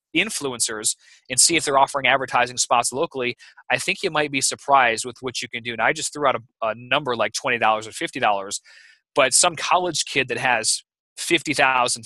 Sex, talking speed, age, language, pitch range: male, 195 wpm, 20-39, English, 125-155 Hz